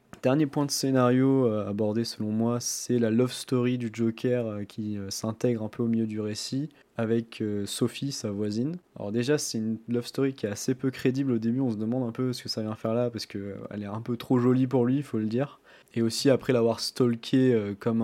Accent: French